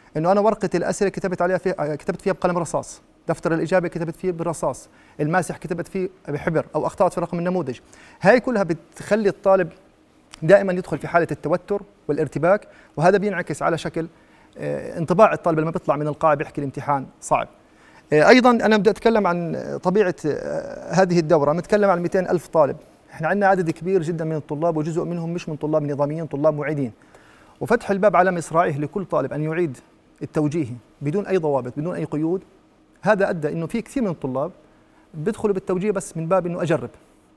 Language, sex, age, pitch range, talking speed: Arabic, male, 30-49, 155-205 Hz, 165 wpm